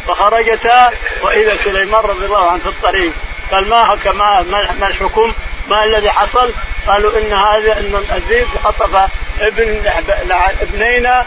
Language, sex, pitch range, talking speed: Arabic, male, 195-250 Hz, 135 wpm